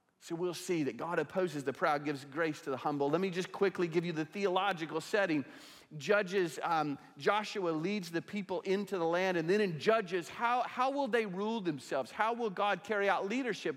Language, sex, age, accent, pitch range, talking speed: English, male, 40-59, American, 145-220 Hz, 205 wpm